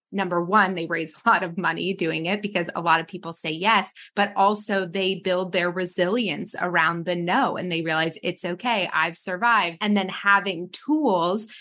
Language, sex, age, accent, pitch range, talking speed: English, female, 20-39, American, 175-205 Hz, 190 wpm